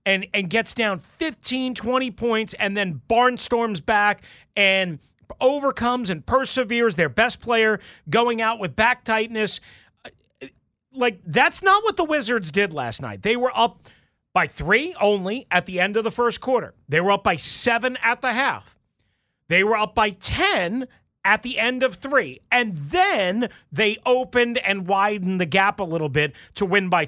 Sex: male